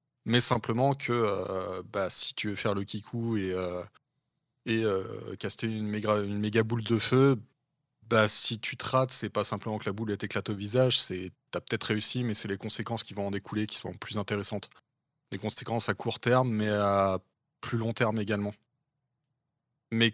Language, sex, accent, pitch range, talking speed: French, male, French, 100-125 Hz, 195 wpm